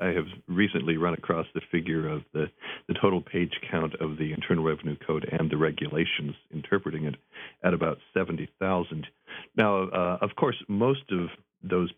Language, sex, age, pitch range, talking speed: English, male, 50-69, 80-95 Hz, 165 wpm